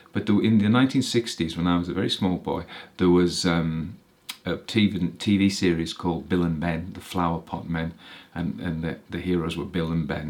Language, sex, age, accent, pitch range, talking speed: English, male, 40-59, British, 85-115 Hz, 190 wpm